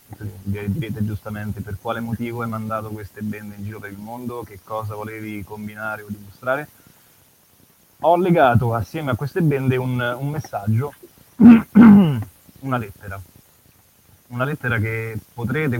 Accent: native